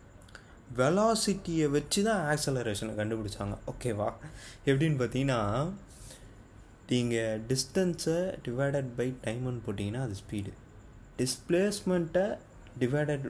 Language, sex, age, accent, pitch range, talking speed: Tamil, male, 20-39, native, 105-130 Hz, 80 wpm